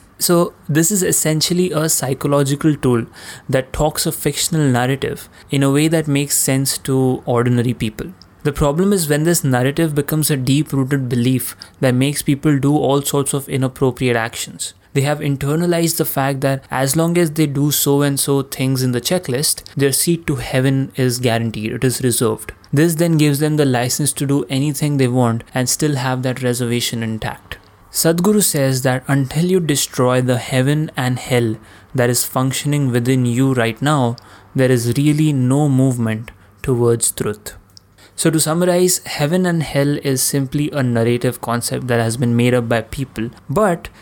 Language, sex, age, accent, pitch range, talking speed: Hindi, male, 20-39, native, 125-150 Hz, 175 wpm